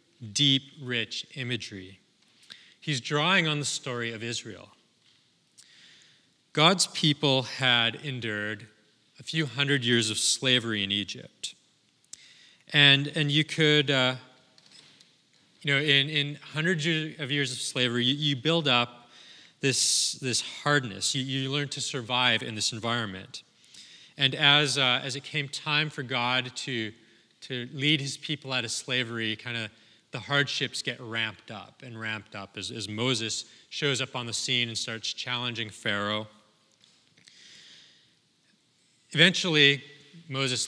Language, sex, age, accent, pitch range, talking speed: English, male, 30-49, American, 115-145 Hz, 135 wpm